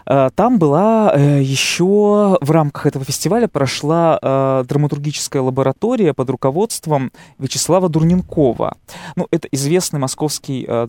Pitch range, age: 135-165 Hz, 20-39